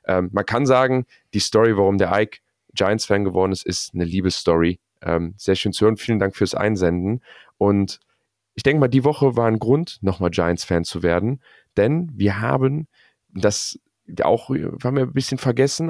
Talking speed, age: 175 wpm, 30-49